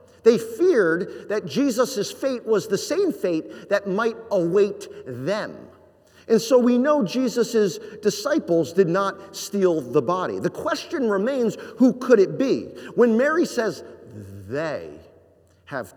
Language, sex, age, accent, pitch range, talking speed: English, male, 50-69, American, 150-230 Hz, 135 wpm